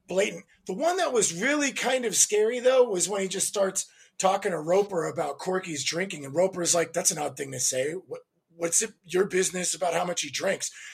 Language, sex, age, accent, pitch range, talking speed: English, male, 30-49, American, 165-225 Hz, 225 wpm